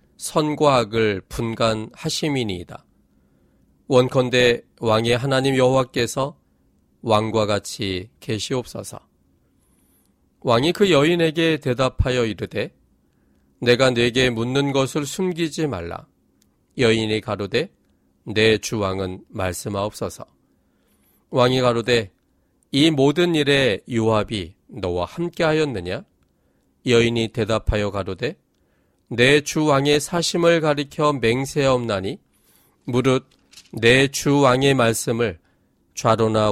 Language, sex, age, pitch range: Korean, male, 40-59, 95-135 Hz